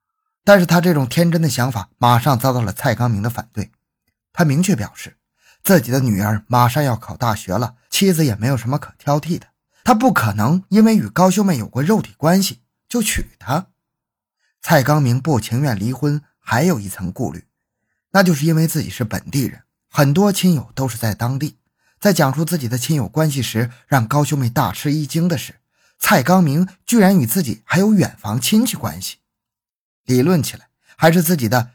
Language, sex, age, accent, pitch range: Chinese, male, 20-39, native, 120-175 Hz